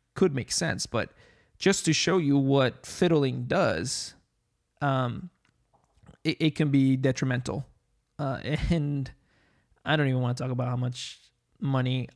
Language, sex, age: English, male, 20-39